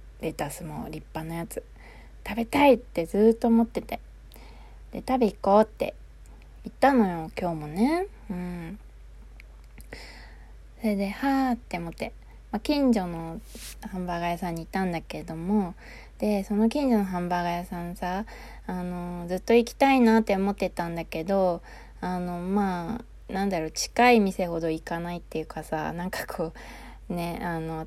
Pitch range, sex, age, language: 170-210 Hz, female, 20-39, Japanese